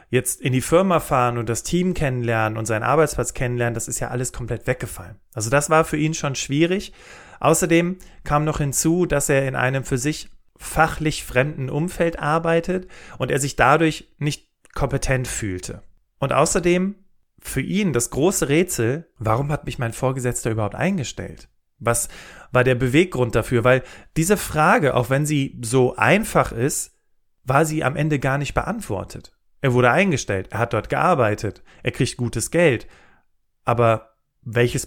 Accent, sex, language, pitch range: German, male, German, 115-155 Hz